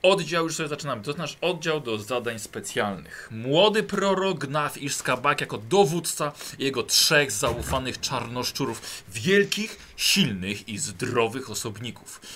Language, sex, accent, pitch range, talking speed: Polish, male, native, 120-165 Hz, 130 wpm